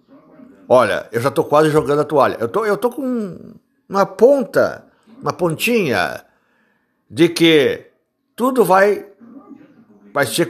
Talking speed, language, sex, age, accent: 130 wpm, Portuguese, male, 60-79, Brazilian